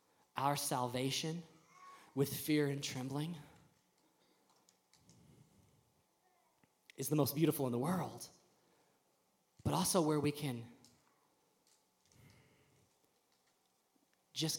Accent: American